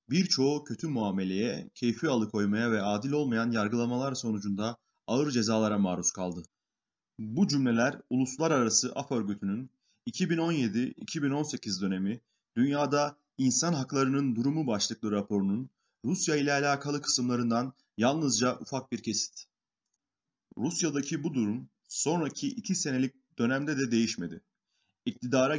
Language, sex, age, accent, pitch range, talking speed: Turkish, male, 30-49, native, 110-140 Hz, 105 wpm